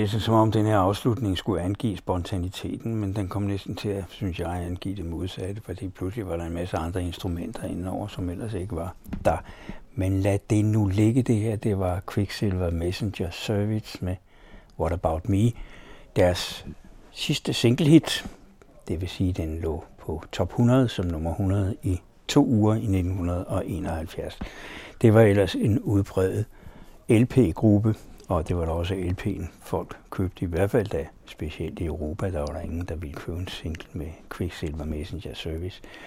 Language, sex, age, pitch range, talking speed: Danish, male, 60-79, 90-105 Hz, 180 wpm